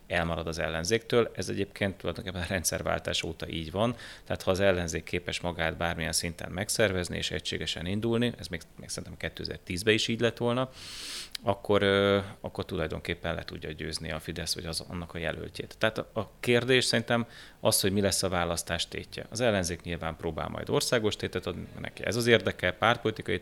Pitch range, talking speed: 85-100 Hz, 180 wpm